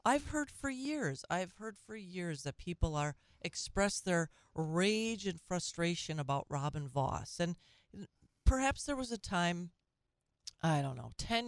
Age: 40-59